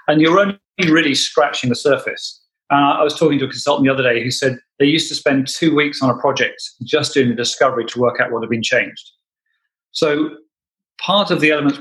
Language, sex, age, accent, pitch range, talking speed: English, male, 40-59, British, 125-150 Hz, 225 wpm